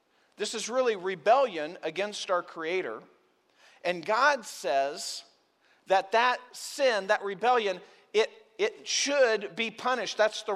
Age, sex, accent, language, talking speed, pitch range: 40-59, male, American, English, 125 wpm, 180-240 Hz